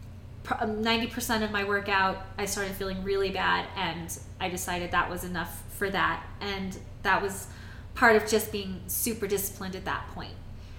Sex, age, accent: female, 20-39, American